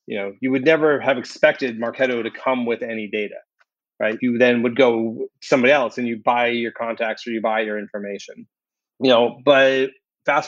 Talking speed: 195 wpm